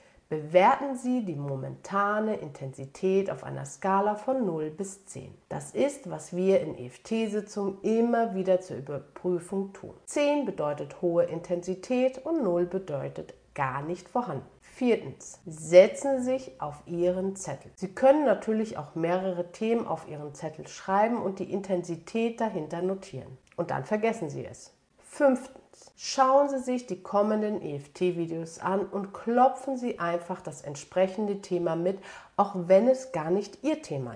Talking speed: 145 wpm